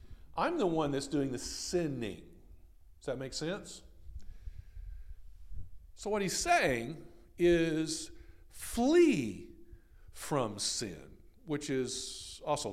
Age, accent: 50-69, American